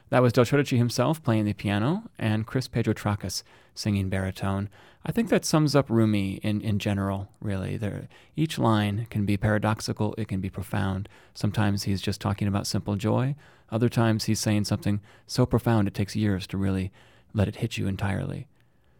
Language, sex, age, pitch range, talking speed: English, male, 30-49, 105-125 Hz, 180 wpm